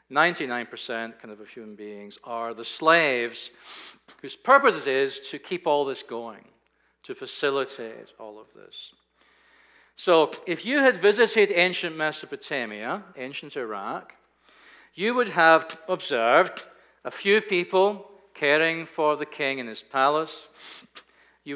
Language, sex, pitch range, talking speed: English, male, 130-195 Hz, 120 wpm